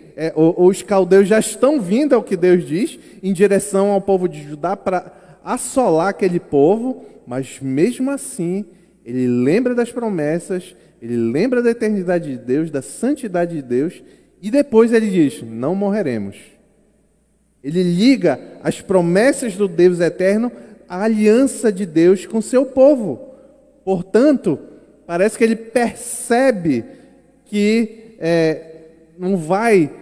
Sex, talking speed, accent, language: male, 130 wpm, Brazilian, Portuguese